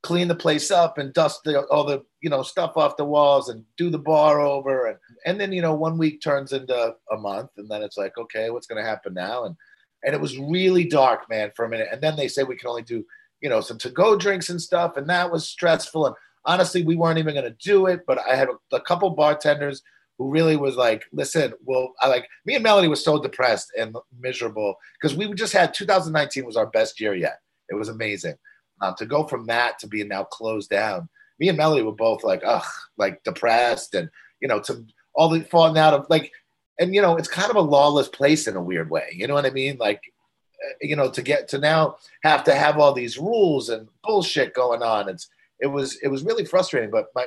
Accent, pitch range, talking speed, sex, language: American, 125-175 Hz, 235 wpm, male, English